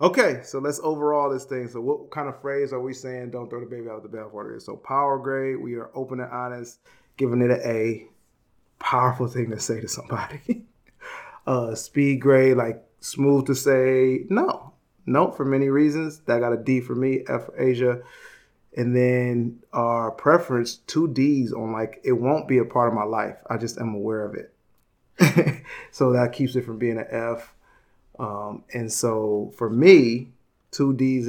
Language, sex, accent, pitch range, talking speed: English, male, American, 120-135 Hz, 190 wpm